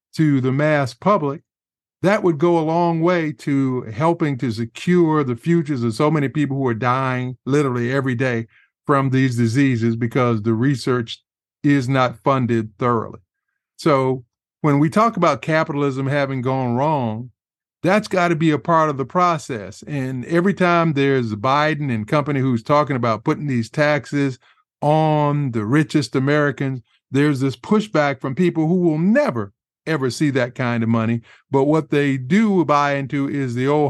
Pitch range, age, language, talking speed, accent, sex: 130-165 Hz, 50-69, English, 165 wpm, American, male